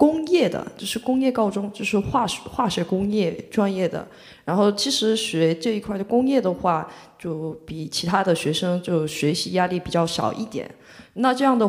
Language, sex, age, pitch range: Chinese, female, 20-39, 165-230 Hz